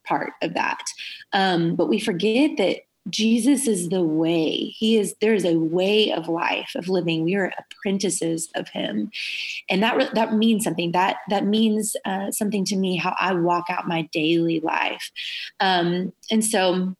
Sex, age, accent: female, 20-39, American